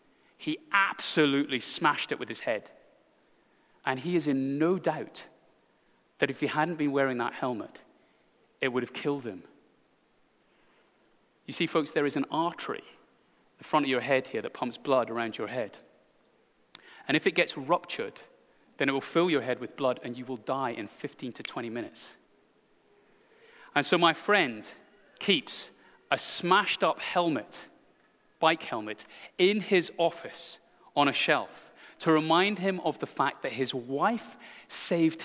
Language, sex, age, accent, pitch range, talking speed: English, male, 30-49, British, 140-195 Hz, 160 wpm